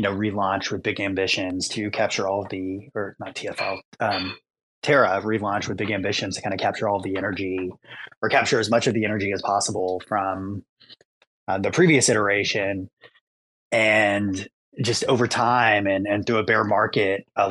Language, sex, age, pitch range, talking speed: English, male, 20-39, 95-100 Hz, 175 wpm